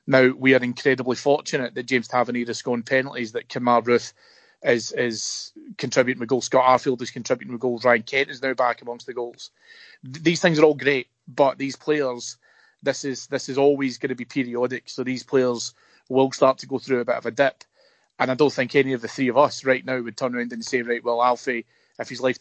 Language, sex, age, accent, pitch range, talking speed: English, male, 30-49, British, 120-140 Hz, 235 wpm